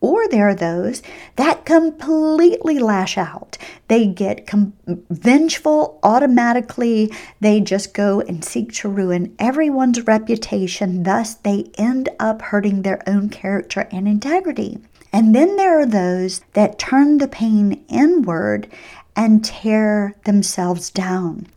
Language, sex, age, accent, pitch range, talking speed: English, female, 50-69, American, 195-260 Hz, 125 wpm